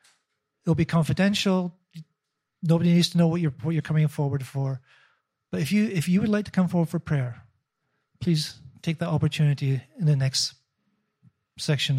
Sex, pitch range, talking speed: male, 140-180 Hz, 170 wpm